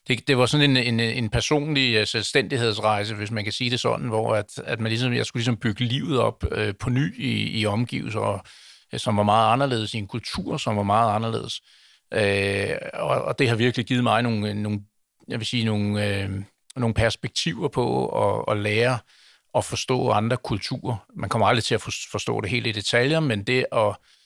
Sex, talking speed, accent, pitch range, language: male, 200 wpm, native, 105-125 Hz, Danish